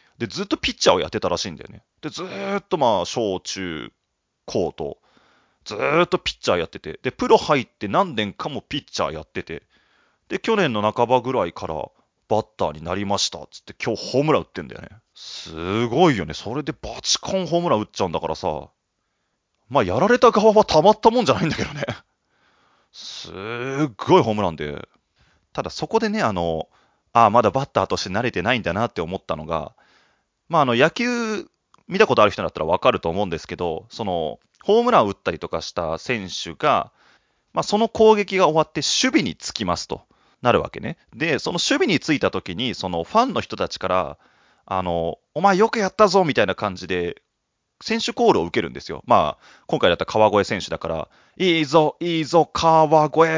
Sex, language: male, Japanese